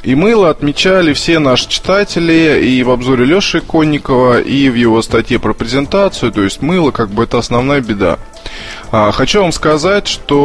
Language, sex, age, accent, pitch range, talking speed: Russian, male, 20-39, native, 105-140 Hz, 165 wpm